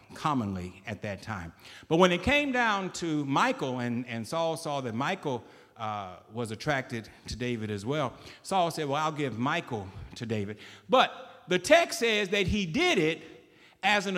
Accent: American